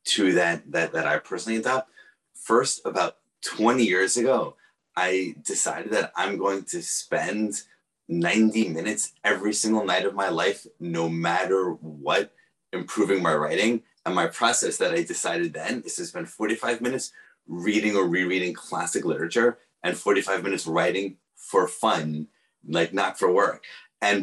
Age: 30-49